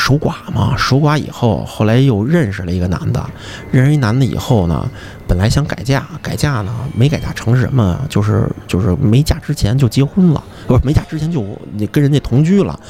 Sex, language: male, Chinese